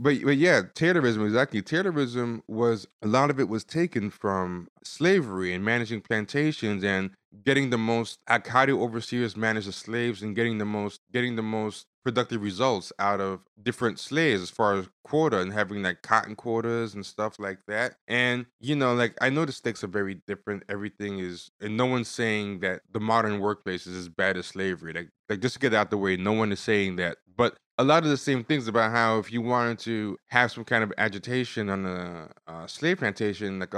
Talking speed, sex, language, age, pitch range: 205 wpm, male, English, 20-39, 100-120 Hz